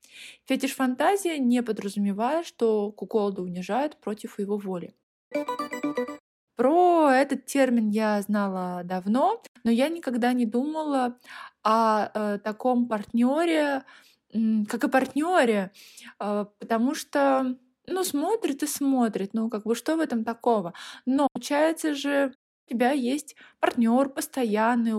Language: Russian